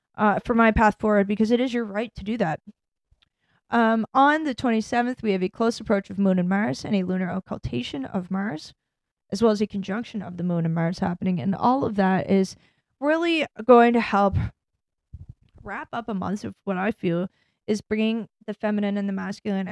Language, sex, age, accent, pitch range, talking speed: English, female, 10-29, American, 190-235 Hz, 205 wpm